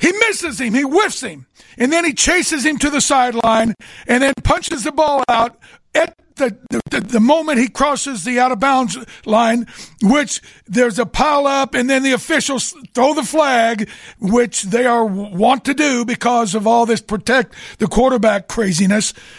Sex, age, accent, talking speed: male, 60-79, American, 180 wpm